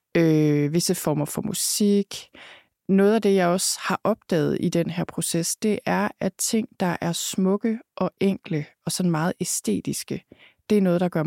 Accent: native